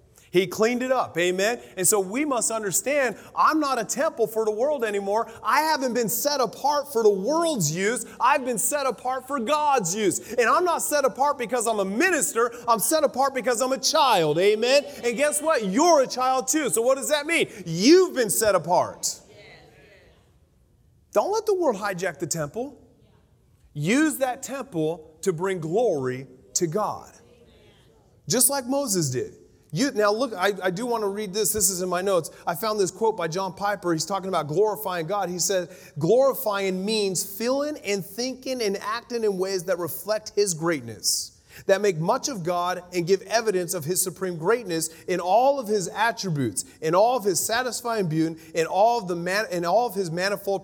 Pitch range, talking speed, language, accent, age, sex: 180-255 Hz, 185 wpm, English, American, 30-49, male